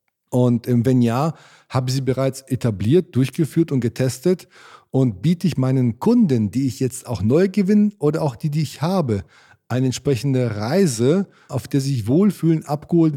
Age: 40-59